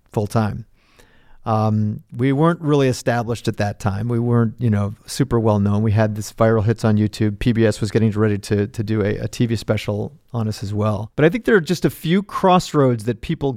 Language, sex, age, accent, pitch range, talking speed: English, male, 40-59, American, 110-130 Hz, 220 wpm